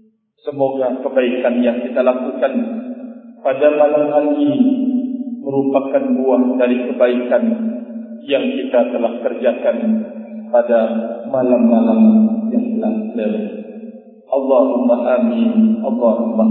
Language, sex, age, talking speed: Indonesian, male, 50-69, 85 wpm